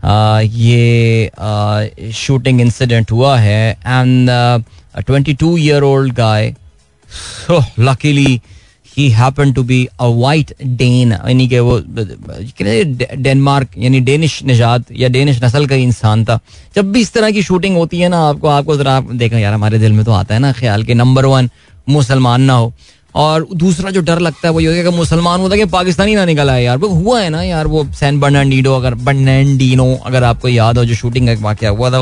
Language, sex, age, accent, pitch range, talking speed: Hindi, male, 20-39, native, 115-155 Hz, 180 wpm